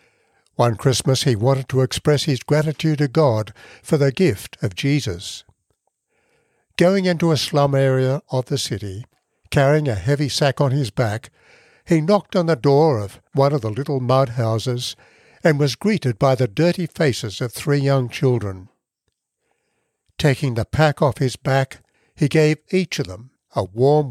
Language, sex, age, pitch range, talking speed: English, male, 60-79, 115-150 Hz, 165 wpm